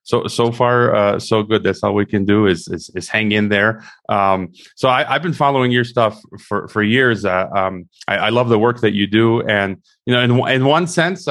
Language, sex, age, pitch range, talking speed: English, male, 30-49, 105-125 Hz, 240 wpm